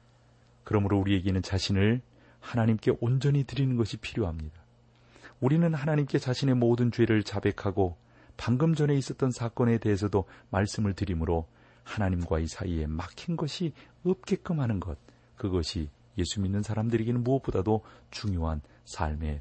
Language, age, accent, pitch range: Korean, 40-59, native, 85-120 Hz